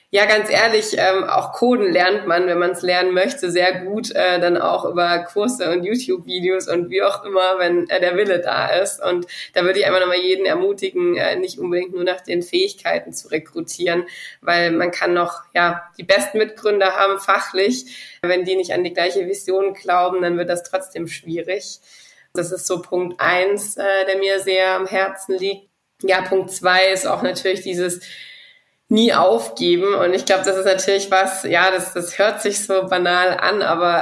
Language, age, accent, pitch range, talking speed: English, 20-39, German, 180-210 Hz, 190 wpm